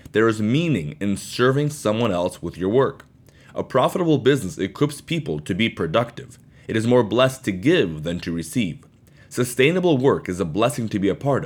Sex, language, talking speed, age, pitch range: male, English, 190 wpm, 30-49, 100-140 Hz